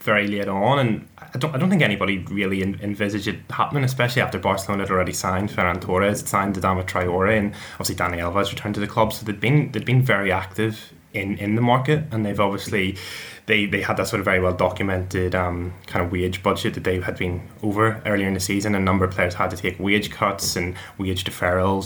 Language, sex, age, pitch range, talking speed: English, male, 10-29, 95-120 Hz, 230 wpm